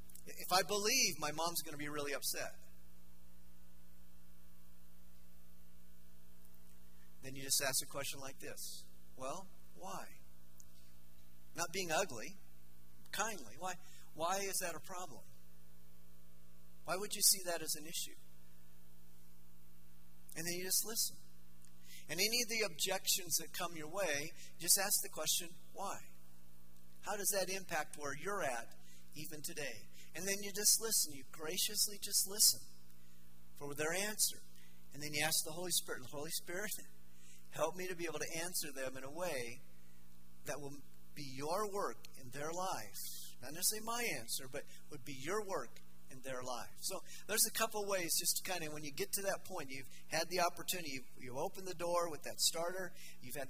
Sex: male